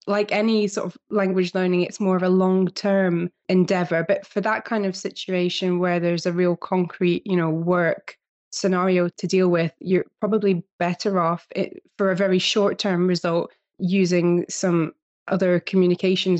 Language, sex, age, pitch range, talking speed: English, female, 20-39, 175-195 Hz, 165 wpm